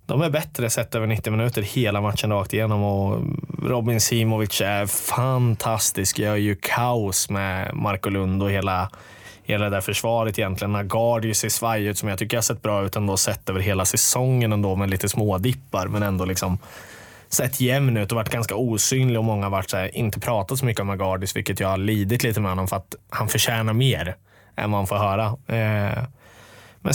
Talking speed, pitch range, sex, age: 195 wpm, 100-120 Hz, male, 20-39